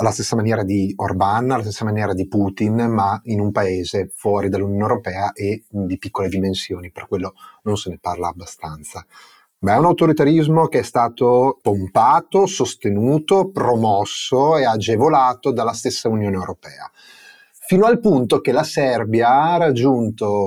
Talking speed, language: 150 wpm, Italian